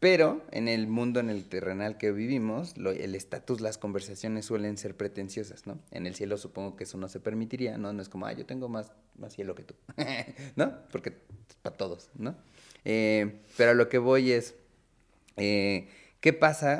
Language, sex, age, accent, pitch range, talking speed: Spanish, male, 30-49, Mexican, 105-130 Hz, 195 wpm